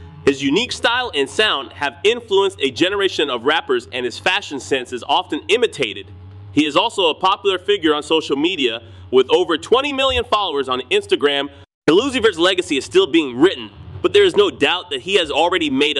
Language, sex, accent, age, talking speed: English, male, American, 30-49, 190 wpm